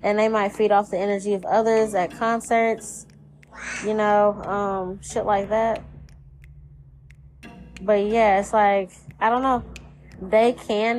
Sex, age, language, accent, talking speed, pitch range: female, 10-29, English, American, 140 wpm, 195-235 Hz